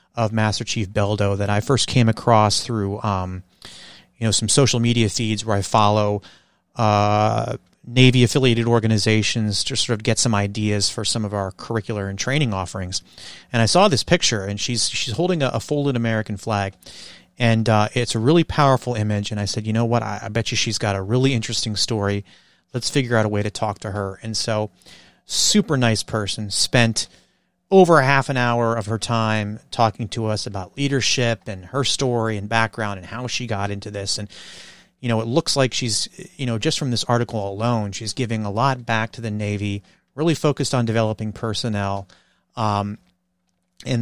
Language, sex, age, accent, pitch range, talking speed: English, male, 30-49, American, 105-120 Hz, 195 wpm